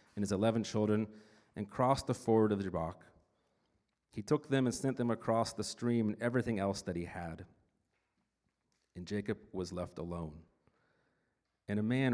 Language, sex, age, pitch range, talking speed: English, male, 40-59, 85-110 Hz, 170 wpm